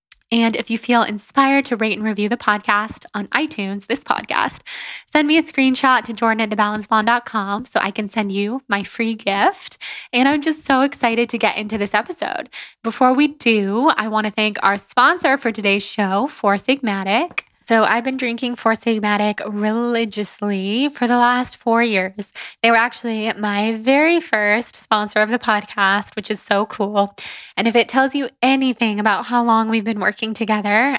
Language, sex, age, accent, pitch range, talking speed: English, female, 10-29, American, 210-245 Hz, 180 wpm